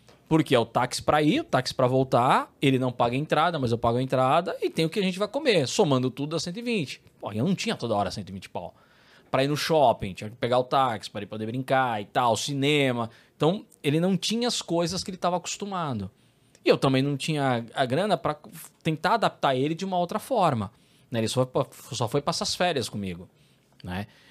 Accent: Brazilian